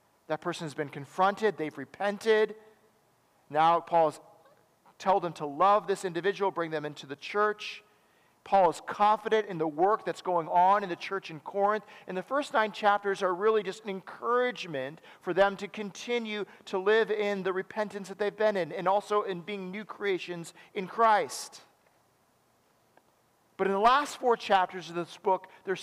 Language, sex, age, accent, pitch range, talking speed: English, male, 40-59, American, 175-215 Hz, 175 wpm